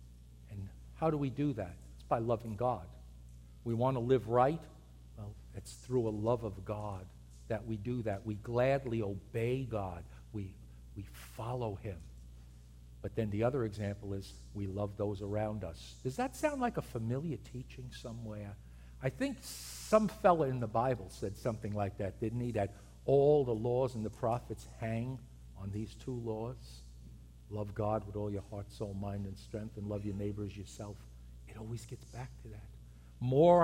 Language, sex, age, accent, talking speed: English, male, 50-69, American, 180 wpm